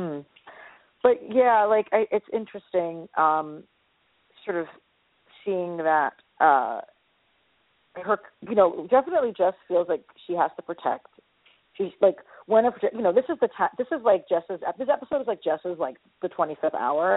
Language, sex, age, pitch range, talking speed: English, female, 40-59, 145-210 Hz, 170 wpm